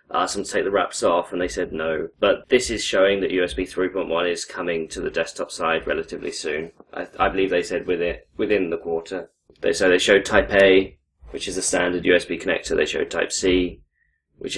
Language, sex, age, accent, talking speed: English, male, 20-39, British, 220 wpm